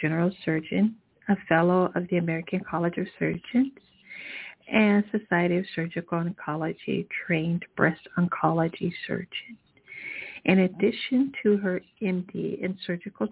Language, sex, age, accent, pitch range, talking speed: English, female, 50-69, American, 175-210 Hz, 115 wpm